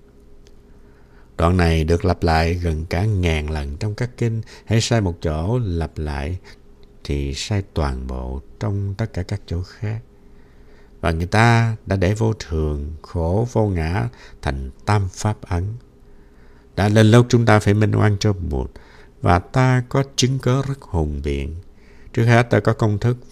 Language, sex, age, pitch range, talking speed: Vietnamese, male, 60-79, 80-110 Hz, 170 wpm